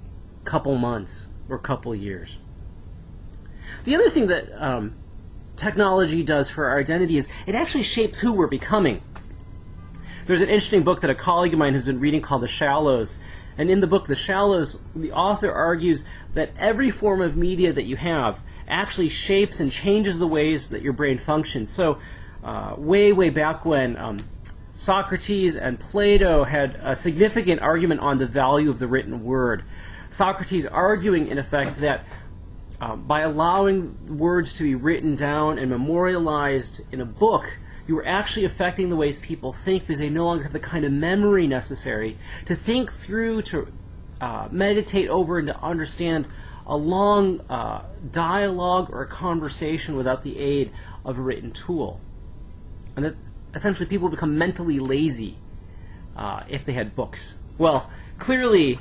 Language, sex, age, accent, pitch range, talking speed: English, male, 30-49, American, 115-180 Hz, 160 wpm